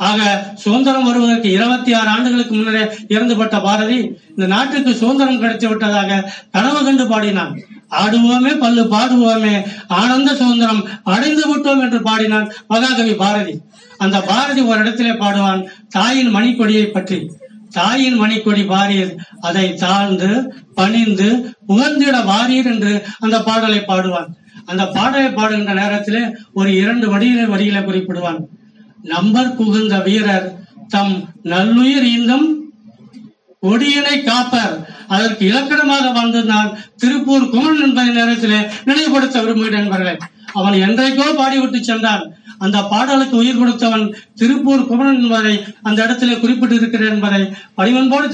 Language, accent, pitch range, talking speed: Tamil, native, 200-245 Hz, 110 wpm